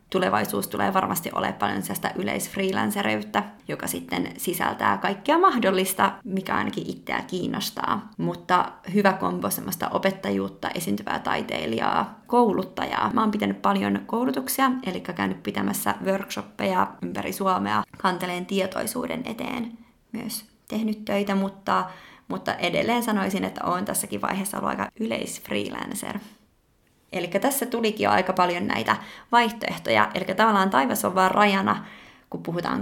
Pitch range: 180-230 Hz